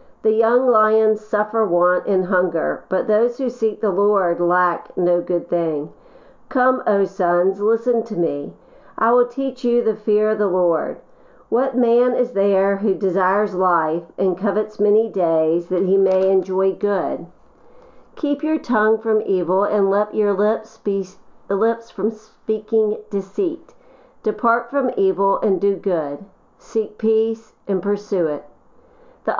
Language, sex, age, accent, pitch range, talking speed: English, female, 50-69, American, 190-235 Hz, 150 wpm